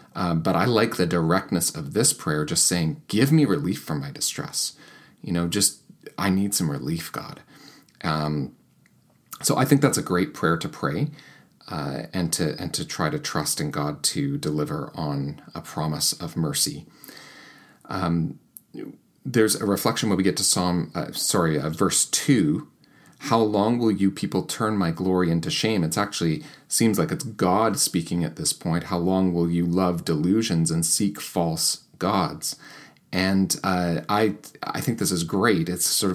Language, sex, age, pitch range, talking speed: English, male, 40-59, 80-105 Hz, 175 wpm